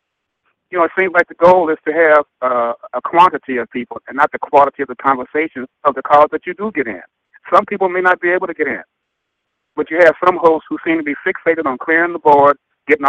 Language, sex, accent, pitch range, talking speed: English, male, American, 125-150 Hz, 250 wpm